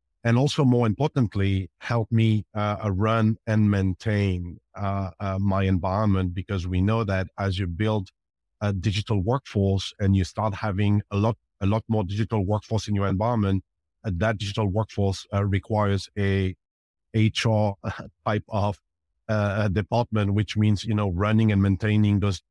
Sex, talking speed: male, 155 wpm